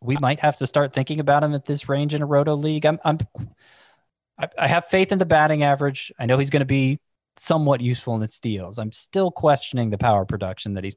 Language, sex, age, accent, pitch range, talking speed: English, male, 20-39, American, 105-140 Hz, 235 wpm